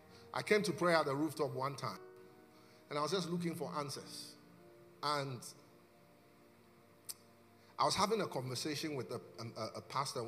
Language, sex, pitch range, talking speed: English, male, 115-170 Hz, 150 wpm